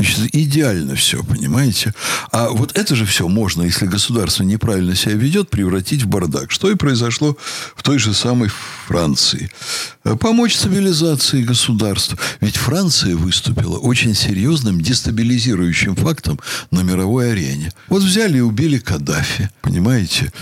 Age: 60-79